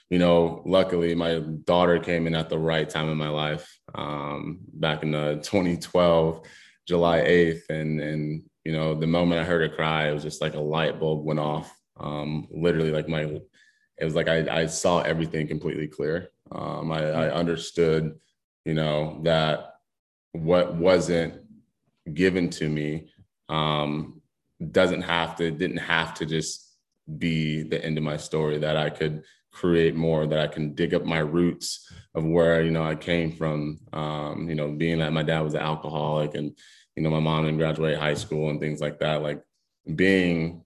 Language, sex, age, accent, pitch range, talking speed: English, male, 20-39, American, 75-85 Hz, 180 wpm